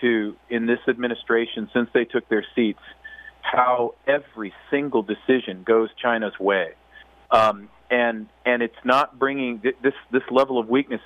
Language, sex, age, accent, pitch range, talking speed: English, male, 40-59, American, 110-130 Hz, 145 wpm